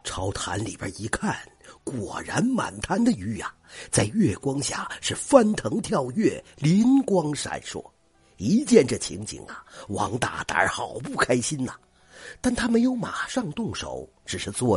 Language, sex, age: Chinese, male, 50-69